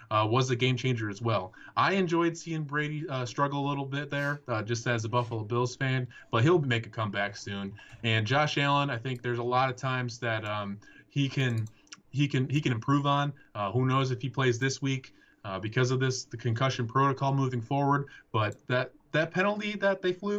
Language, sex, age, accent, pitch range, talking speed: English, male, 20-39, American, 120-145 Hz, 220 wpm